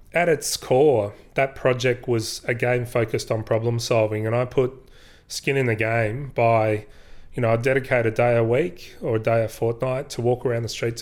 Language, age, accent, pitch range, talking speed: English, 30-49, Australian, 115-130 Hz, 200 wpm